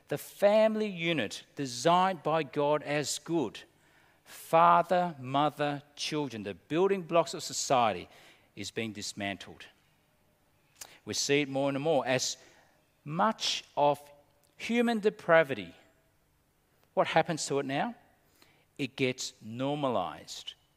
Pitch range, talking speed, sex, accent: 125-165 Hz, 110 wpm, male, Australian